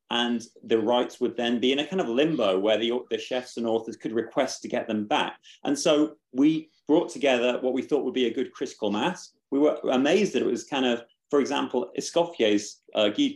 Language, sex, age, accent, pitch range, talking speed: English, male, 30-49, British, 110-135 Hz, 225 wpm